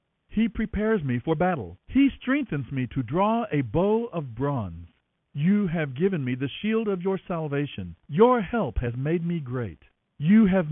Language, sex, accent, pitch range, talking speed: English, male, American, 135-215 Hz, 175 wpm